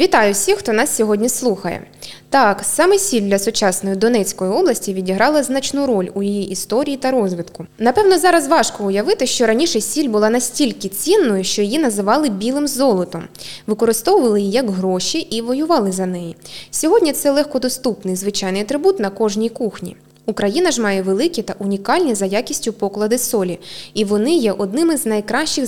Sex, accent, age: female, native, 20-39